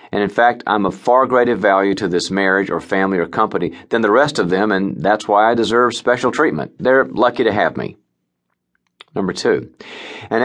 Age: 40-59